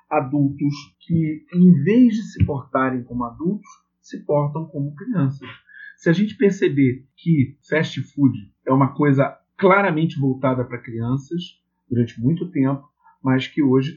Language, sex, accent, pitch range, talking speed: Portuguese, male, Brazilian, 130-180 Hz, 140 wpm